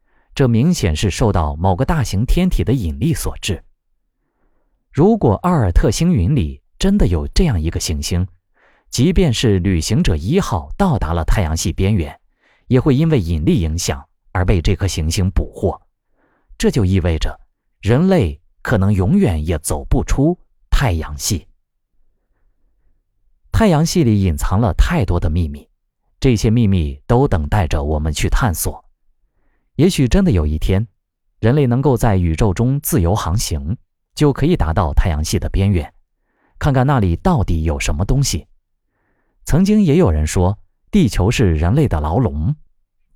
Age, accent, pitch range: 30-49, native, 85-130 Hz